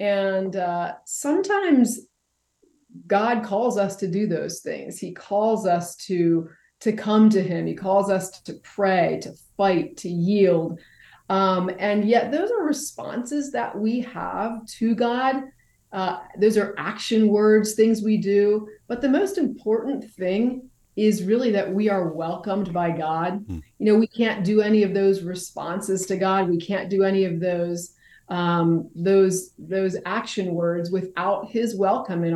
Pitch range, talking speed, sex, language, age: 180-225 Hz, 160 wpm, female, English, 30-49